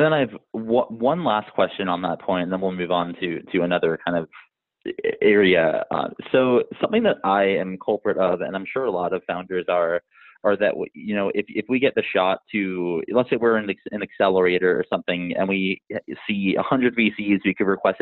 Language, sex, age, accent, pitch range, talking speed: English, male, 20-39, American, 90-110 Hz, 210 wpm